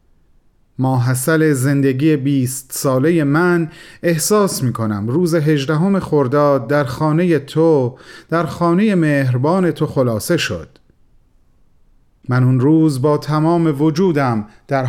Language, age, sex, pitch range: Persian, 40-59, male, 135-170 Hz